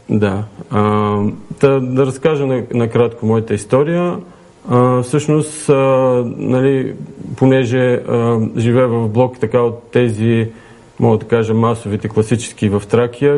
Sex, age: male, 40-59